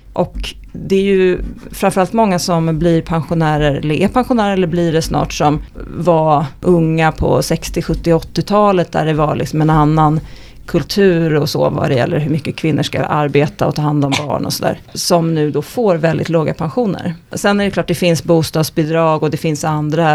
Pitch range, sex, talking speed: 155-185 Hz, female, 190 wpm